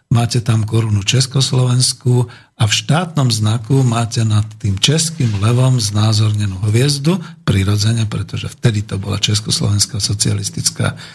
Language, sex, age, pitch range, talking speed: Slovak, male, 50-69, 110-130 Hz, 120 wpm